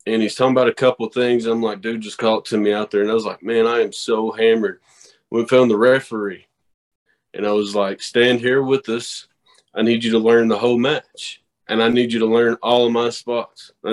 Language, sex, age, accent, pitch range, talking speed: English, male, 20-39, American, 115-155 Hz, 250 wpm